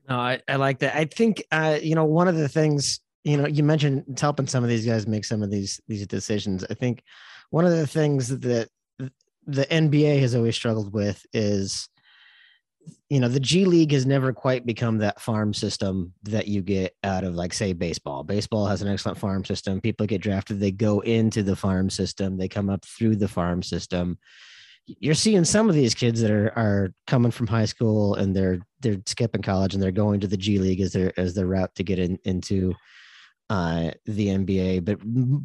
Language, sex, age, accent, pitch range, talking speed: English, male, 30-49, American, 100-125 Hz, 210 wpm